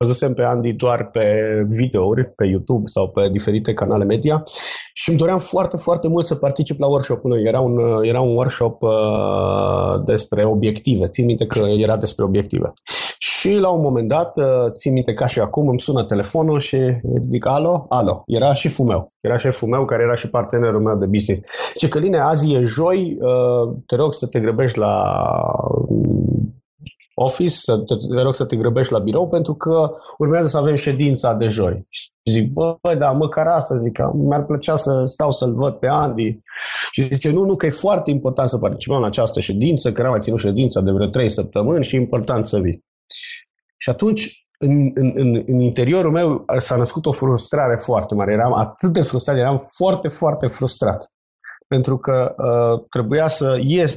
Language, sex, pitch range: Romanian, male, 115-150 Hz